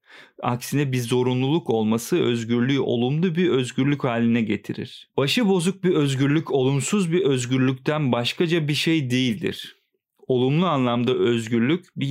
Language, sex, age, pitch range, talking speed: Turkish, male, 40-59, 120-150 Hz, 125 wpm